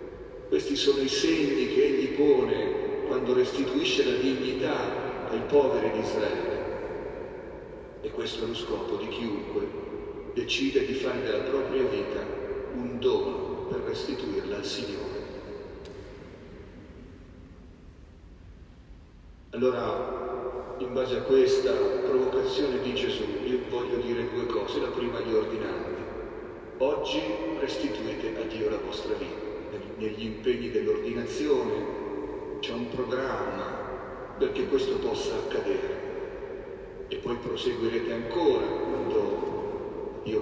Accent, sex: native, male